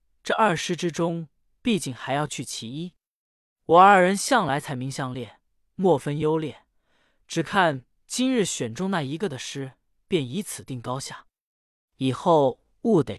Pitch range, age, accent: 130-200 Hz, 20-39, native